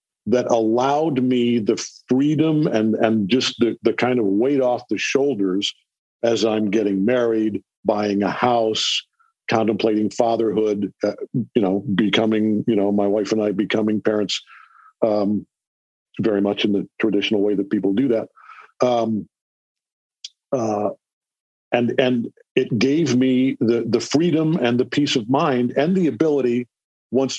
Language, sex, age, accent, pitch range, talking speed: English, male, 50-69, American, 105-130 Hz, 145 wpm